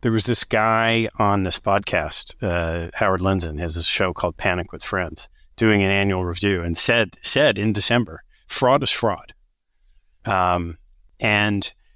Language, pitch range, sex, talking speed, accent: English, 85-115 Hz, male, 155 wpm, American